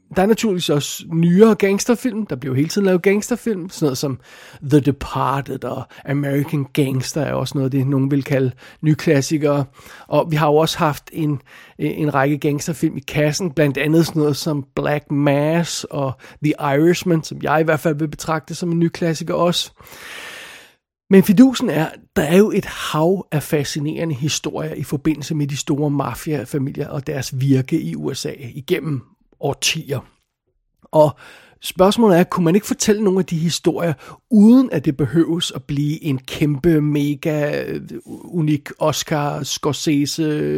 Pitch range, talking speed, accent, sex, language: 145-180 Hz, 165 wpm, native, male, Danish